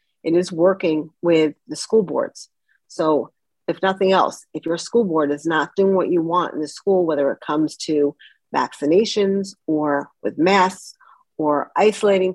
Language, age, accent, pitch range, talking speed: English, 40-59, American, 165-195 Hz, 165 wpm